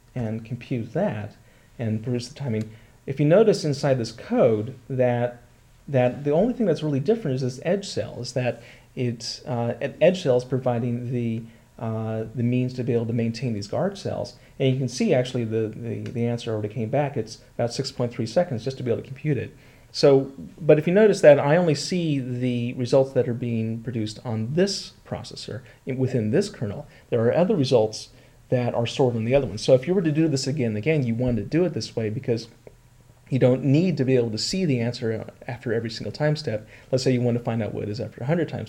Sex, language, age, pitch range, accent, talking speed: male, English, 40-59, 115-130 Hz, American, 225 wpm